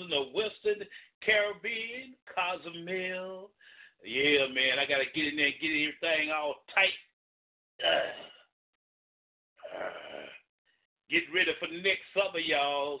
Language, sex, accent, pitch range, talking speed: English, male, American, 155-210 Hz, 115 wpm